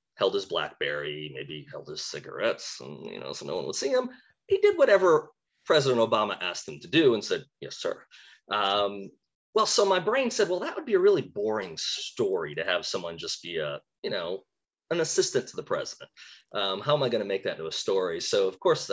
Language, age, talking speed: English, 30-49, 220 wpm